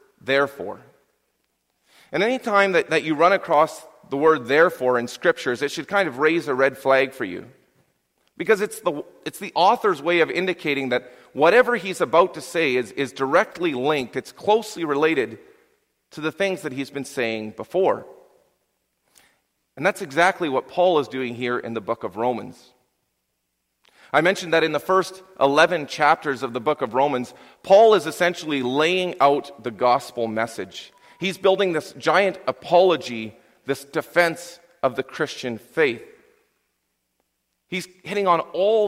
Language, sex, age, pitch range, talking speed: English, male, 40-59, 135-180 Hz, 160 wpm